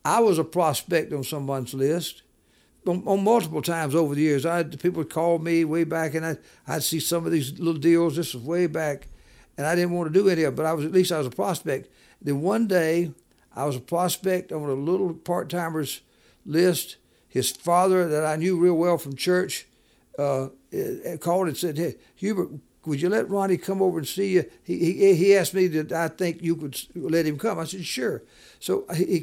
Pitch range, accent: 155-180 Hz, American